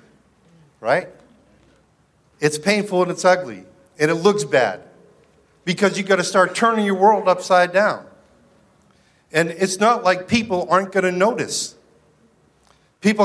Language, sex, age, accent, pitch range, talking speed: English, male, 50-69, American, 150-205 Hz, 135 wpm